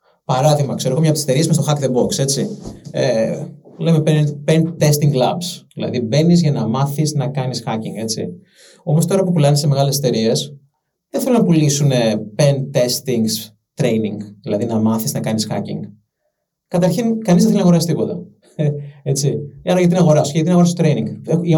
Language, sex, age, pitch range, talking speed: Greek, male, 30-49, 140-175 Hz, 170 wpm